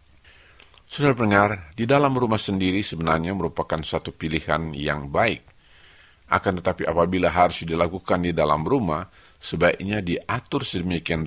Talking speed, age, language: 115 wpm, 50-69, Indonesian